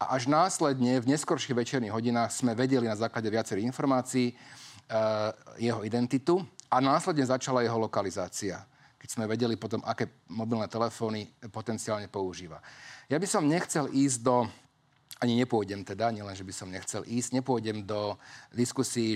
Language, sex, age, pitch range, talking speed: Slovak, male, 40-59, 110-130 Hz, 145 wpm